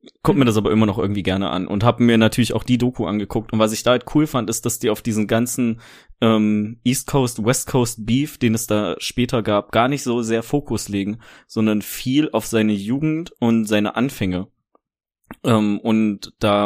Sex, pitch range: male, 105-120 Hz